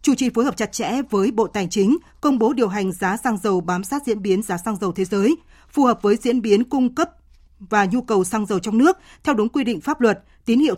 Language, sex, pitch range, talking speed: Vietnamese, female, 200-250 Hz, 265 wpm